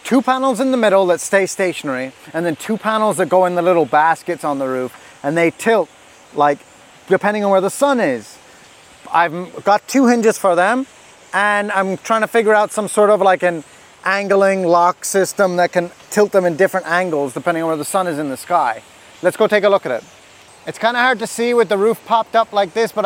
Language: English